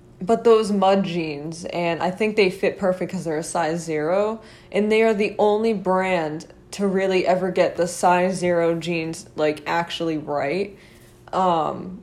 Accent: American